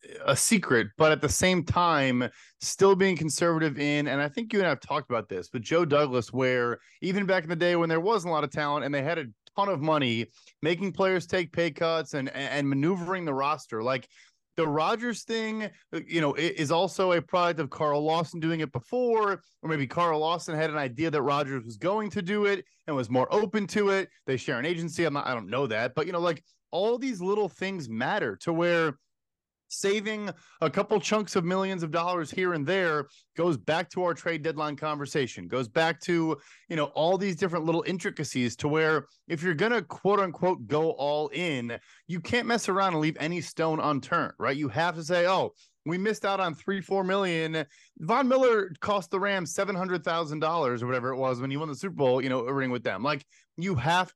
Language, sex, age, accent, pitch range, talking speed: English, male, 30-49, American, 145-190 Hz, 220 wpm